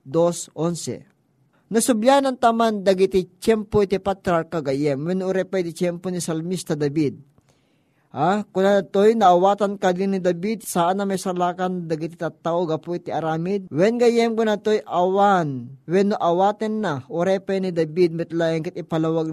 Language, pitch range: Filipino, 160-210 Hz